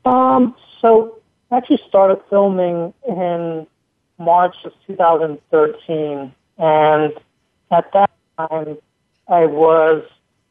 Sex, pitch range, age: male, 155-195 Hz, 30-49